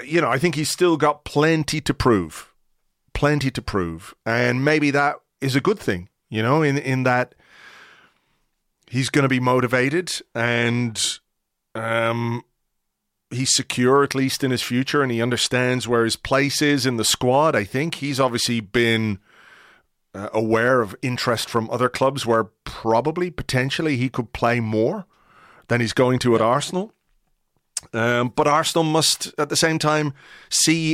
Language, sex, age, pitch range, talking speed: English, male, 30-49, 115-140 Hz, 160 wpm